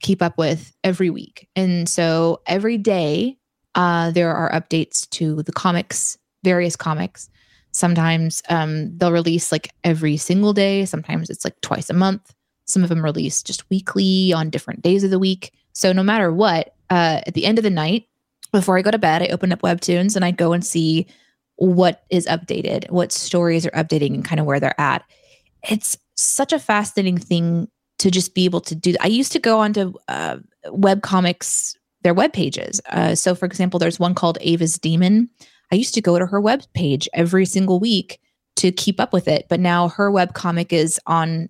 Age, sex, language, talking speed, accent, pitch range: 20-39, female, English, 195 wpm, American, 165-200 Hz